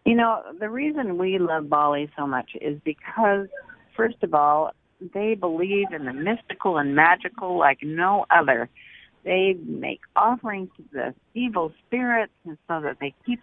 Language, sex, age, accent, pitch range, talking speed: English, female, 50-69, American, 155-235 Hz, 160 wpm